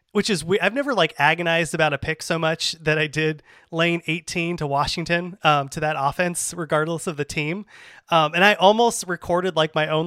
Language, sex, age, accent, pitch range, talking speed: English, male, 30-49, American, 145-175 Hz, 210 wpm